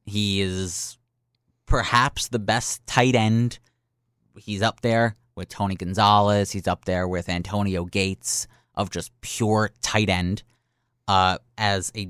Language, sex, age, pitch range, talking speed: English, male, 30-49, 100-130 Hz, 135 wpm